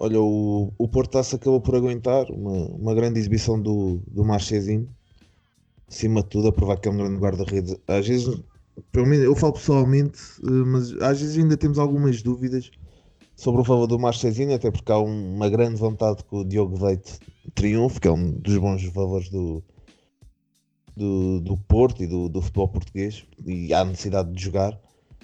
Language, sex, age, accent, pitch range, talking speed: Portuguese, male, 20-39, Portuguese, 95-115 Hz, 175 wpm